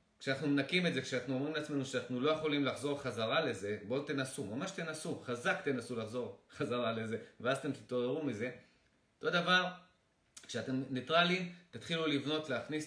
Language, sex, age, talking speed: Hebrew, male, 30-49, 155 wpm